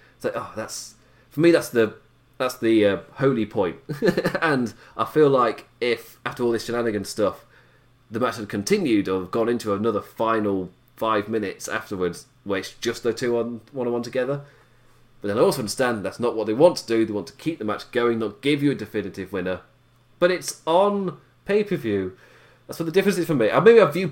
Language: English